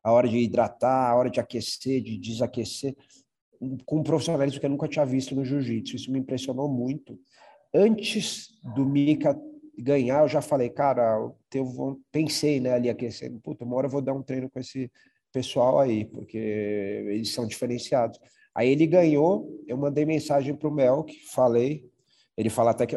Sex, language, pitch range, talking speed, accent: male, English, 115-140 Hz, 175 wpm, Brazilian